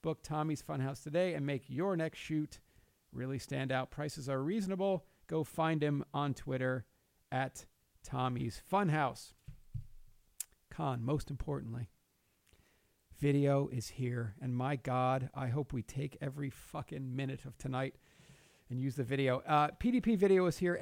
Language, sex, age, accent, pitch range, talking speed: English, male, 40-59, American, 135-165 Hz, 145 wpm